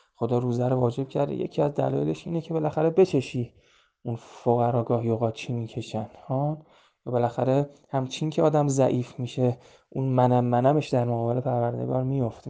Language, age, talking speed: Persian, 20-39, 170 wpm